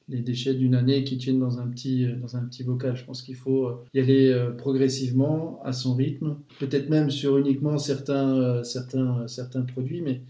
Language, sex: French, male